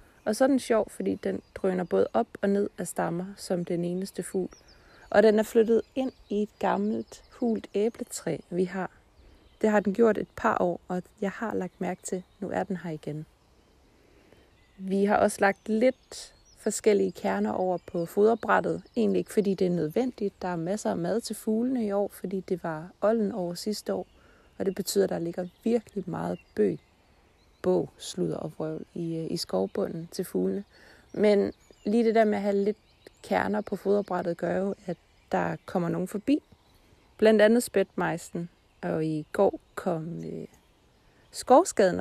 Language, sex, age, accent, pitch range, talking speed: Danish, female, 30-49, native, 175-215 Hz, 180 wpm